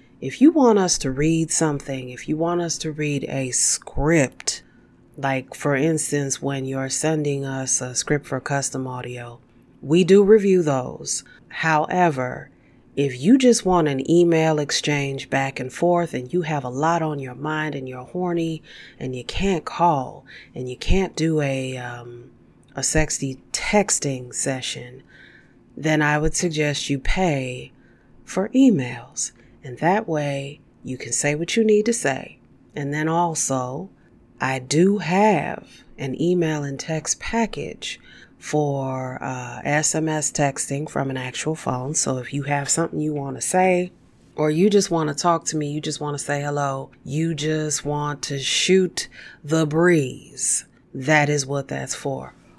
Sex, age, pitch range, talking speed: female, 30-49, 135-165 Hz, 160 wpm